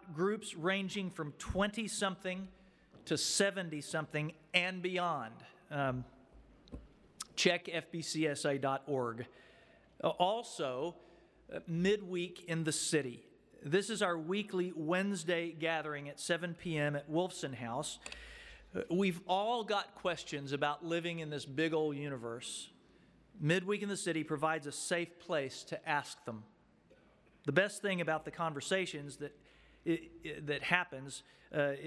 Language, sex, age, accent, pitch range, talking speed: English, male, 40-59, American, 150-180 Hz, 115 wpm